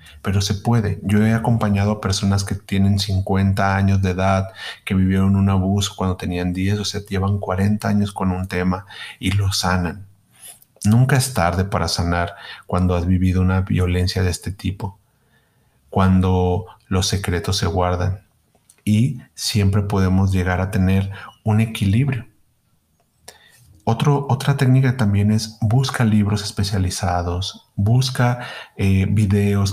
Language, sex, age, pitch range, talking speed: Spanish, male, 30-49, 95-110 Hz, 135 wpm